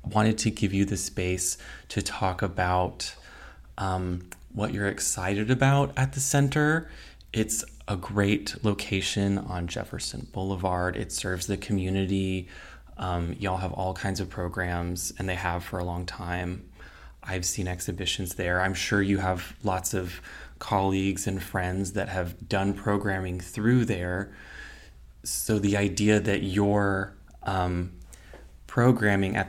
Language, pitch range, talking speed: English, 90-105 Hz, 140 wpm